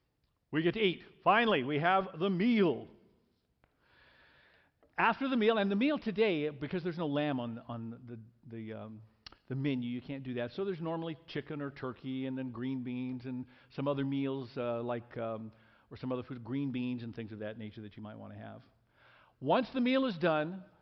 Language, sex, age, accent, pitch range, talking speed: English, male, 50-69, American, 115-165 Hz, 200 wpm